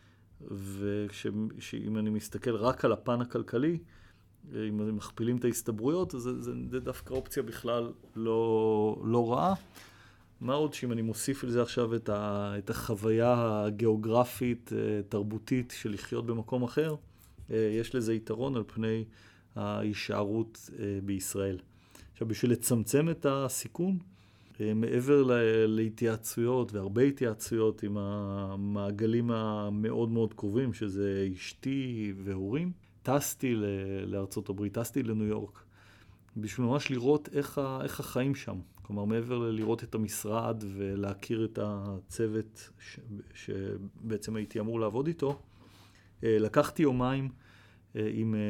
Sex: male